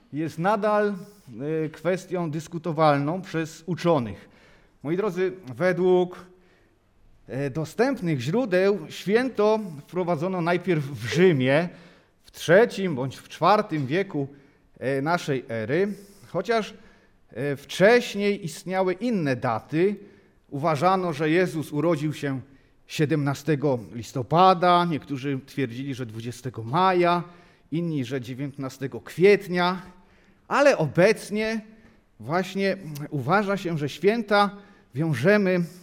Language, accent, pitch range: Polish, native, 140-190 Hz